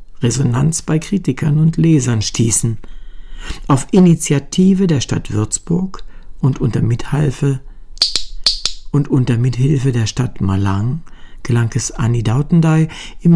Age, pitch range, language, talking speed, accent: 60-79, 120-160 Hz, German, 110 wpm, German